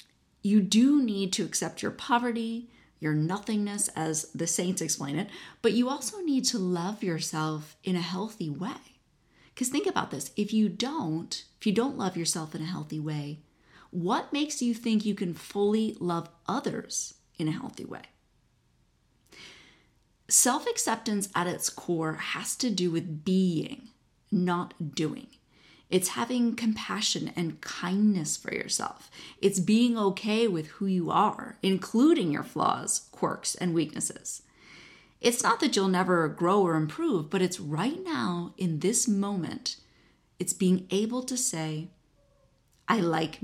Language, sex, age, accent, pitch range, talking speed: English, female, 30-49, American, 160-215 Hz, 150 wpm